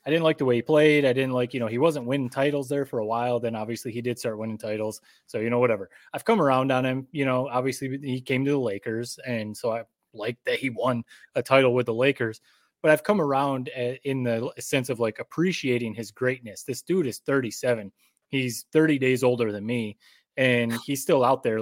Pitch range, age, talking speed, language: 115-140 Hz, 20-39, 230 wpm, English